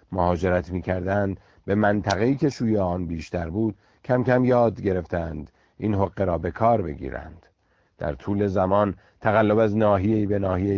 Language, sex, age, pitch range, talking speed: Persian, male, 50-69, 90-110 Hz, 150 wpm